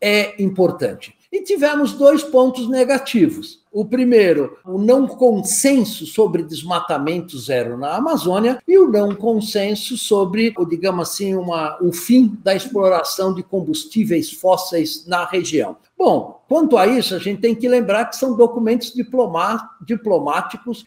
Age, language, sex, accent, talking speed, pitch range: 60-79, Portuguese, male, Brazilian, 130 wpm, 175-245 Hz